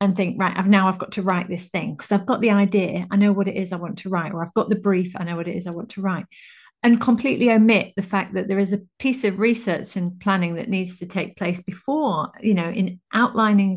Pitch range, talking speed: 180-215 Hz, 275 wpm